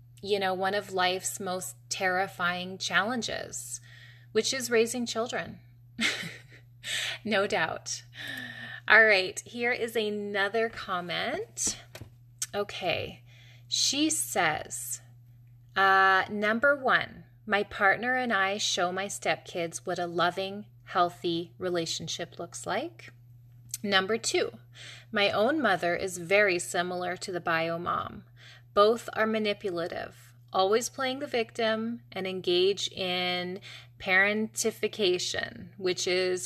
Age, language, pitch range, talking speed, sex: 20-39, English, 160-210 Hz, 105 wpm, female